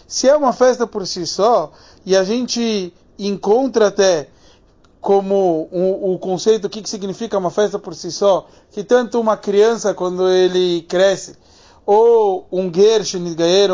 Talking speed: 155 wpm